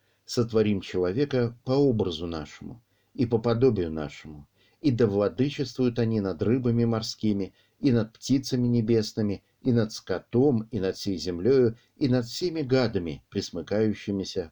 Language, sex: Russian, male